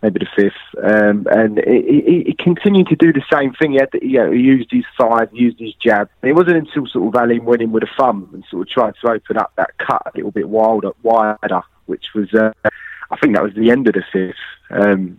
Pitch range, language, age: 110-125 Hz, English, 20-39